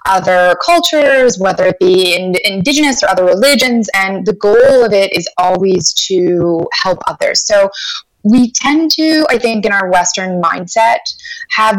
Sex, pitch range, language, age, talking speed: female, 185-245 Hz, English, 20-39, 155 wpm